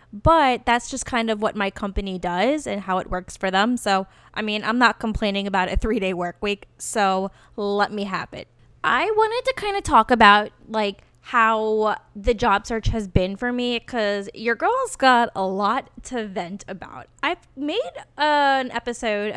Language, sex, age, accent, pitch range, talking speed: English, female, 10-29, American, 200-255 Hz, 190 wpm